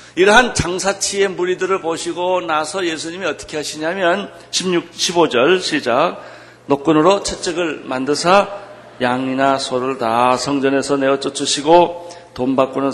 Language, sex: Korean, male